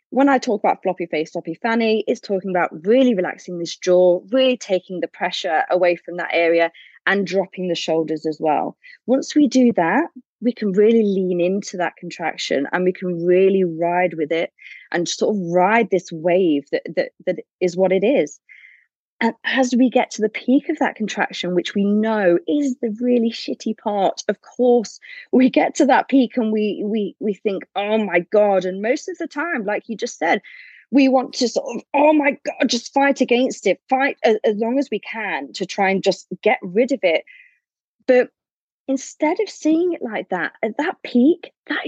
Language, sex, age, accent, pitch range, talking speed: English, female, 20-39, British, 185-260 Hz, 200 wpm